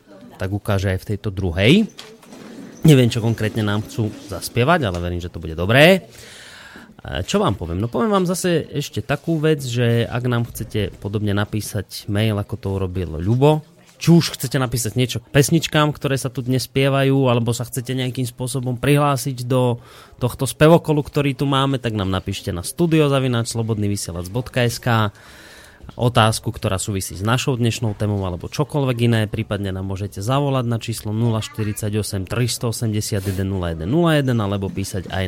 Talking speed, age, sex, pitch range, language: 155 wpm, 30-49, male, 105-140 Hz, Slovak